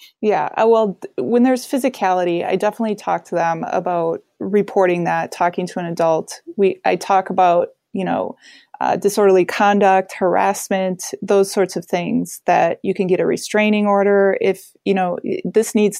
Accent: American